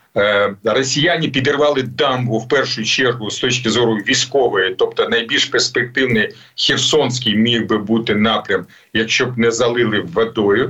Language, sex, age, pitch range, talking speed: Ukrainian, male, 40-59, 115-150 Hz, 130 wpm